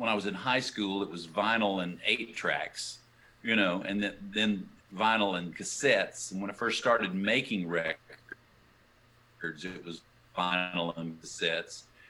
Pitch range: 95-115 Hz